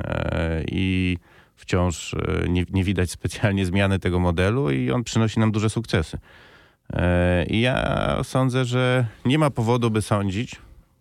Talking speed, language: 130 wpm, Polish